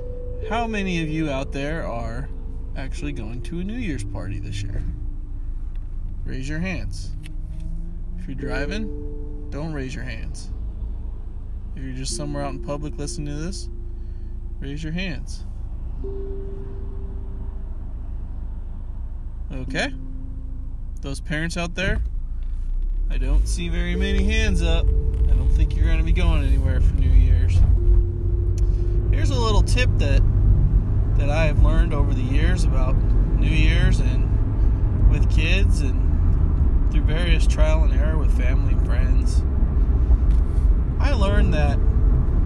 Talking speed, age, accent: 125 wpm, 20-39, American